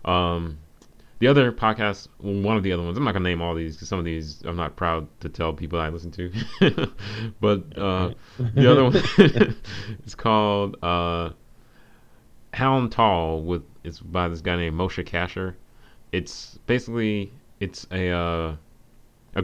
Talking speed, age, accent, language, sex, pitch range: 160 wpm, 30-49, American, English, male, 80-105 Hz